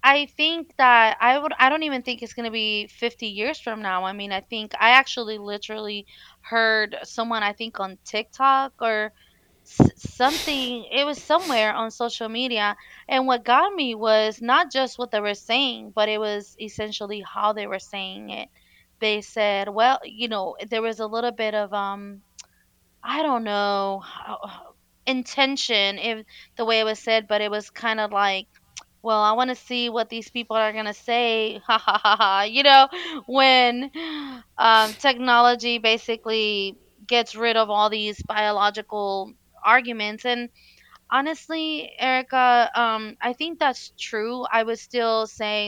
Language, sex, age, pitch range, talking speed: English, female, 20-39, 210-250 Hz, 170 wpm